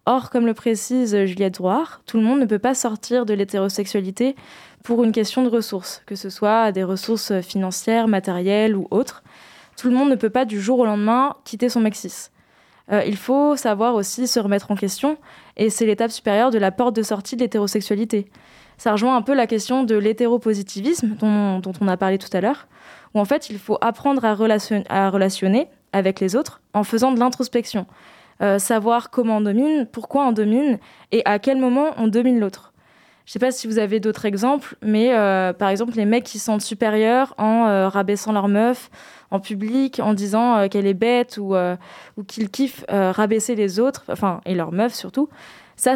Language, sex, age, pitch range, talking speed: French, female, 20-39, 205-245 Hz, 205 wpm